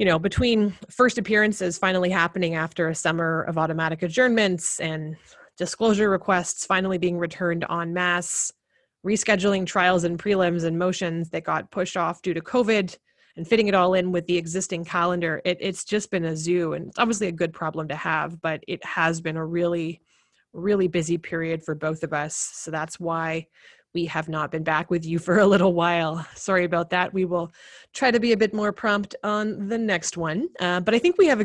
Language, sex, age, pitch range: English, female, 30-49, 165-200 Hz